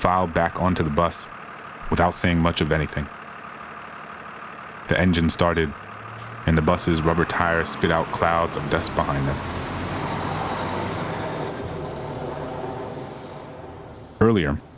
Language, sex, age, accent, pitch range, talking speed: English, male, 30-49, American, 80-95 Hz, 105 wpm